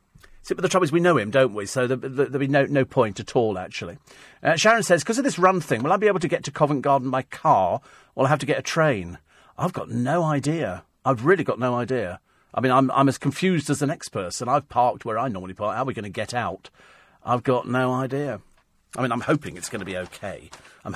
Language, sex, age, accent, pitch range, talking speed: English, male, 40-59, British, 120-155 Hz, 265 wpm